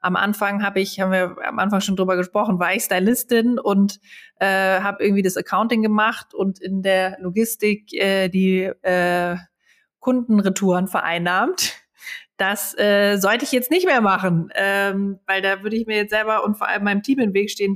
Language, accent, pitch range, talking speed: German, German, 185-210 Hz, 185 wpm